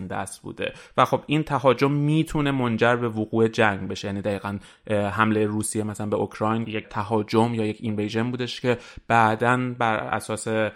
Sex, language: male, Persian